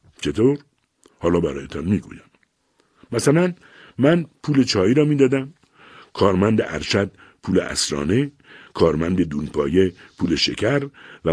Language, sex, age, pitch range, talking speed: Persian, male, 60-79, 90-140 Hz, 100 wpm